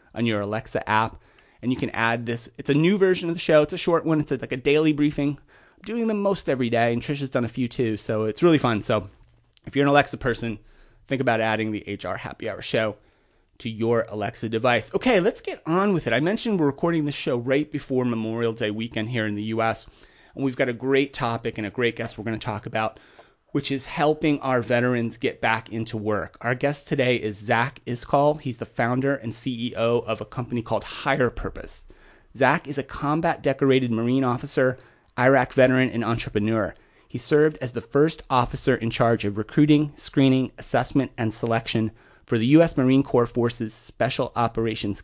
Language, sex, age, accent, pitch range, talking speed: English, male, 30-49, American, 115-140 Hz, 205 wpm